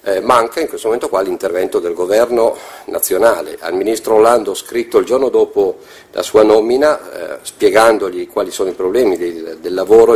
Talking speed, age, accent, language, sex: 165 wpm, 50-69, native, Italian, male